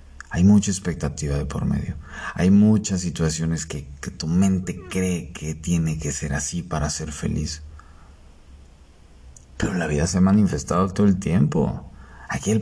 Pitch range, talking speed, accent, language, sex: 75-95 Hz, 155 wpm, Mexican, Spanish, male